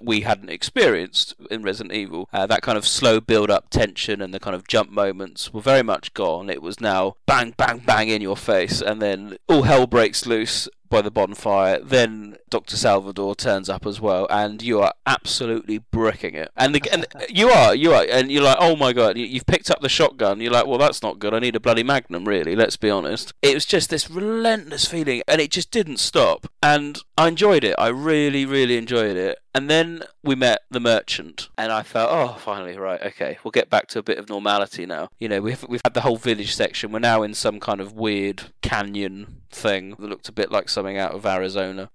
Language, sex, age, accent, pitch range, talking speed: English, male, 30-49, British, 100-130 Hz, 225 wpm